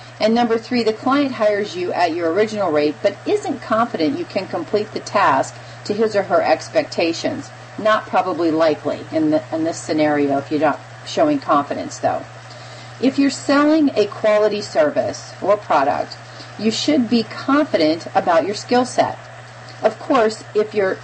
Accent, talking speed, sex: American, 165 wpm, female